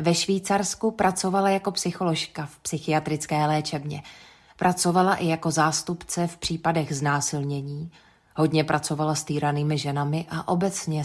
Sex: female